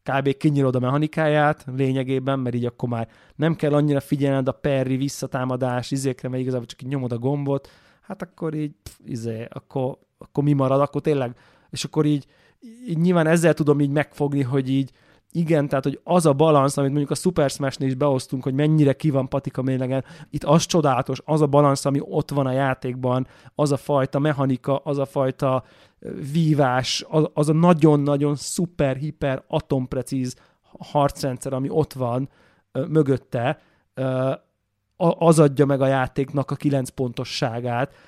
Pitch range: 130-150 Hz